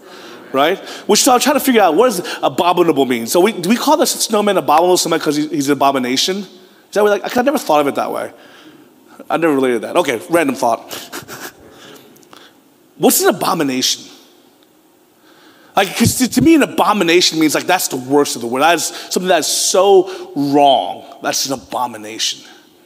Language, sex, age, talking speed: English, male, 30-49, 185 wpm